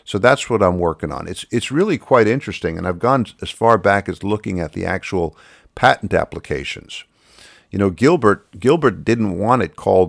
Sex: male